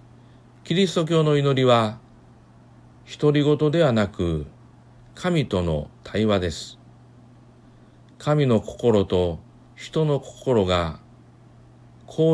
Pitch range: 105-135 Hz